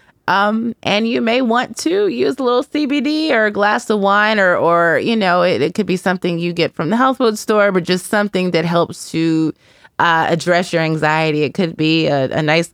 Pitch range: 155-195 Hz